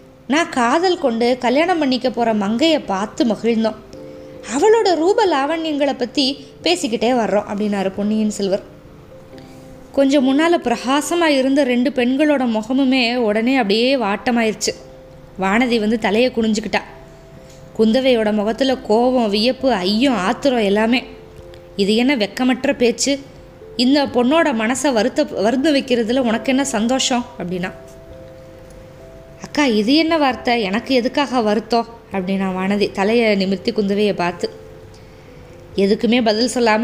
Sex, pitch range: female, 215-270 Hz